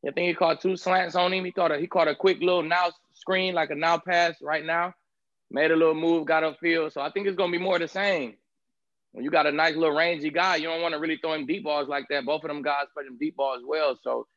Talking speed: 290 wpm